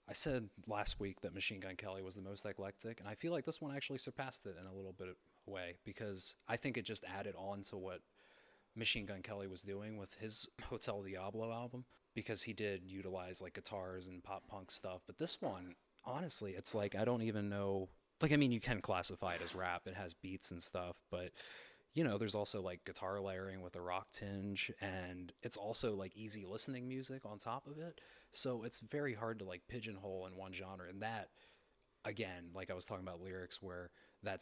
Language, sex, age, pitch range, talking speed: English, male, 30-49, 95-110 Hz, 220 wpm